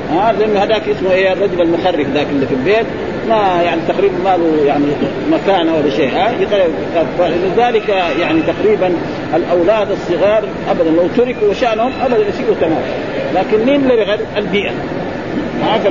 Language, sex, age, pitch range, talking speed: Arabic, male, 50-69, 180-235 Hz, 135 wpm